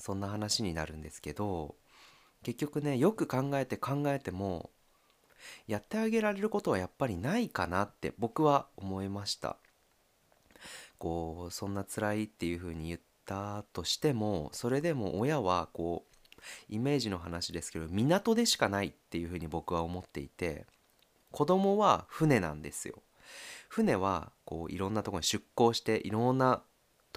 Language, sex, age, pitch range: Japanese, male, 30-49, 85-130 Hz